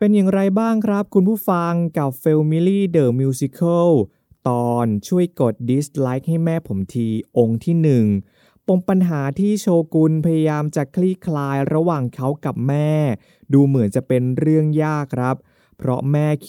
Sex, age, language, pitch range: male, 20-39, Thai, 125-165 Hz